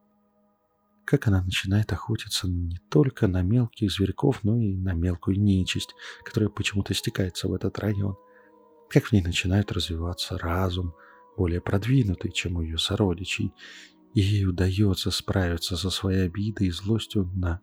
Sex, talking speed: male, 145 wpm